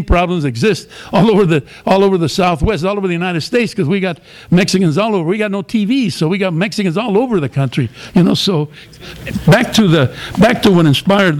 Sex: male